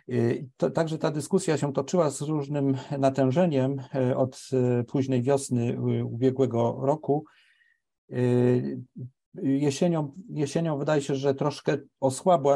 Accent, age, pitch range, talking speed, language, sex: native, 50-69, 120-140 Hz, 100 wpm, Polish, male